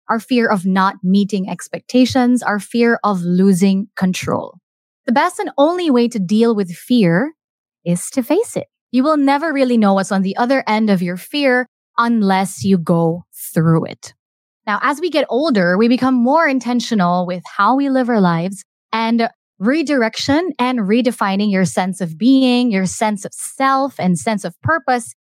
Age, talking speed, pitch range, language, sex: 20-39, 175 wpm, 195-265 Hz, English, female